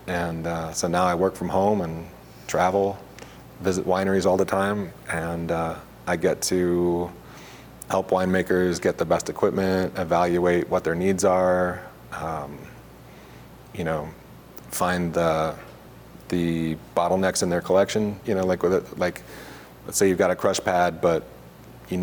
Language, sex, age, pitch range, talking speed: English, male, 30-49, 85-95 Hz, 155 wpm